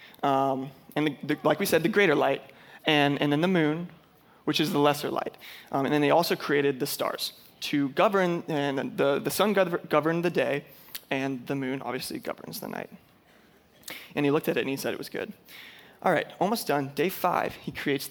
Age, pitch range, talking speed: 20-39, 140-170 Hz, 210 wpm